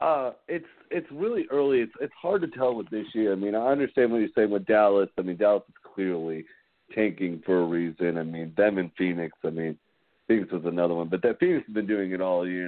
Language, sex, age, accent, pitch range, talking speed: English, male, 40-59, American, 95-120 Hz, 240 wpm